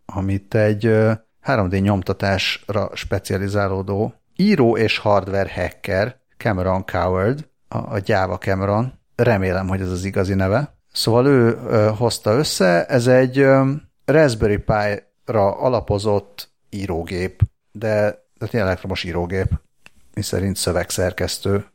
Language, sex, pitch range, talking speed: Hungarian, male, 95-115 Hz, 100 wpm